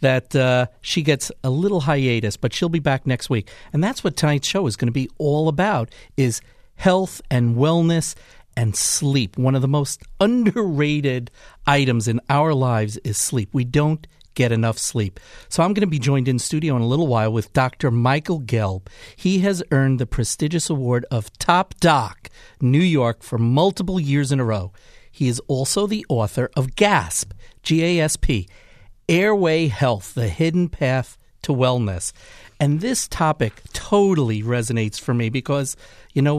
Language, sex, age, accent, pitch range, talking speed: English, male, 50-69, American, 115-155 Hz, 170 wpm